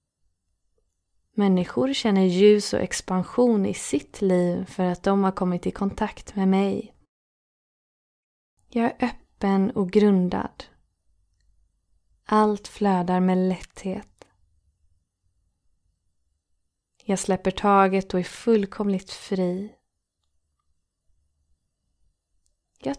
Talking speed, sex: 90 wpm, female